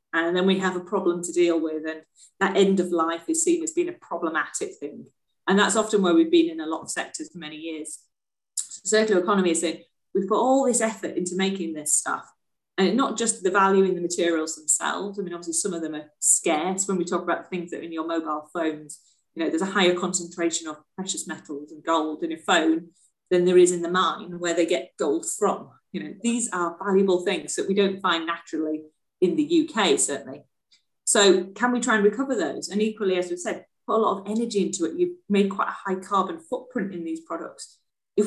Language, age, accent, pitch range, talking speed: English, 30-49, British, 170-210 Hz, 230 wpm